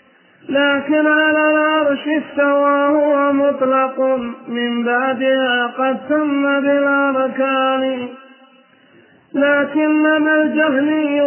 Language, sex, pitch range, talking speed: Arabic, male, 265-295 Hz, 80 wpm